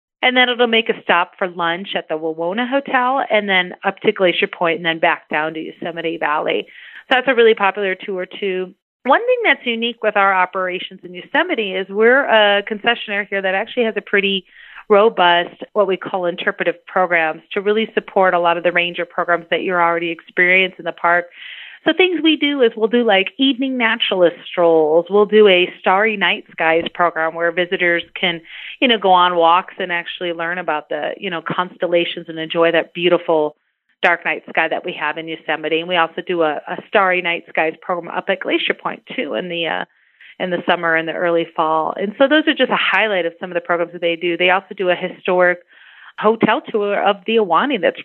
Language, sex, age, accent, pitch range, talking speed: English, female, 30-49, American, 170-215 Hz, 210 wpm